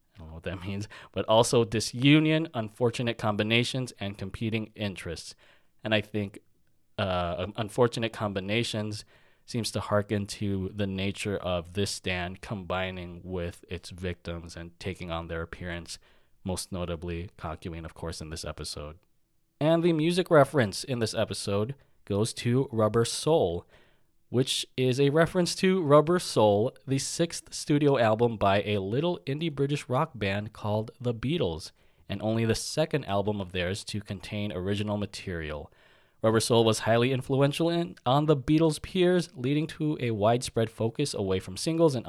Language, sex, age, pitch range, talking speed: English, male, 20-39, 95-135 Hz, 155 wpm